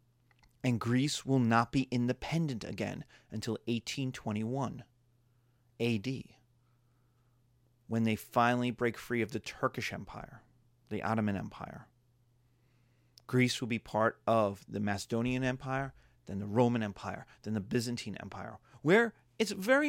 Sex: male